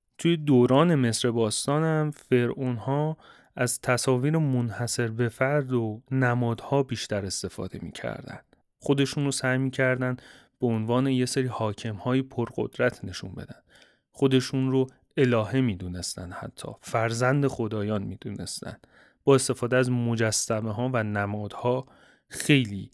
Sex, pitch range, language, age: male, 110-135 Hz, Persian, 30-49